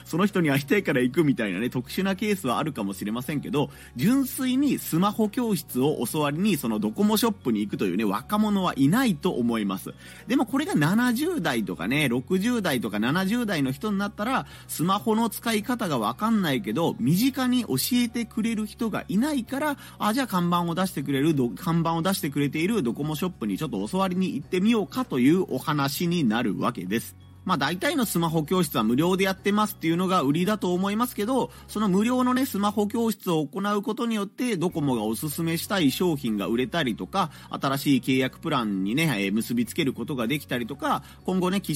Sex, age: male, 30-49